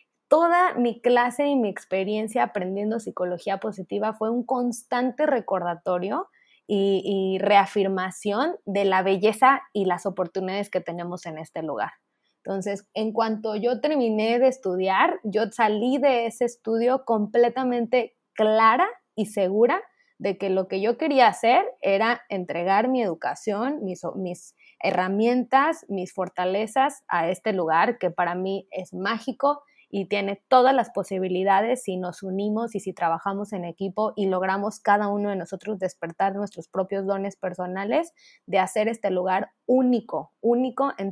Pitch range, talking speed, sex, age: 190-235 Hz, 145 wpm, female, 20-39